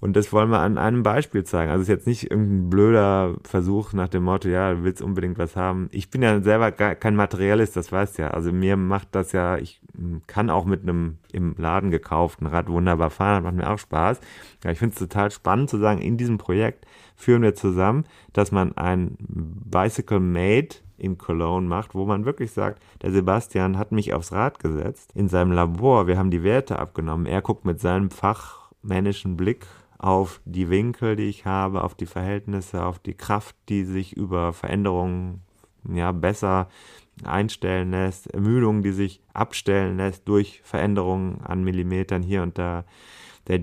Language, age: German, 30-49